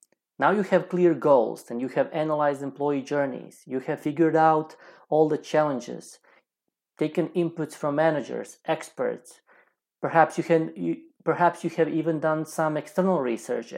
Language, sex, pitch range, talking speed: English, male, 145-175 Hz, 140 wpm